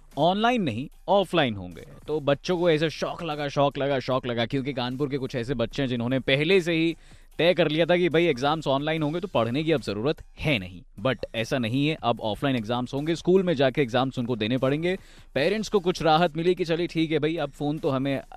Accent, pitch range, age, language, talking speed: native, 125-175 Hz, 20-39, Hindi, 230 wpm